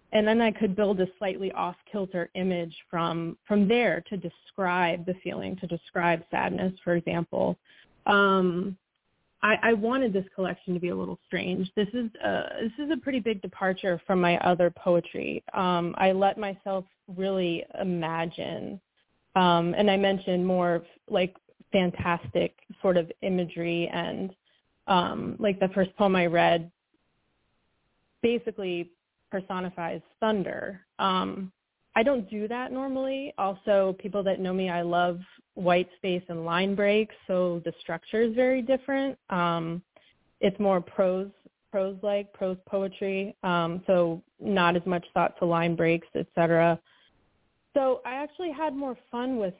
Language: English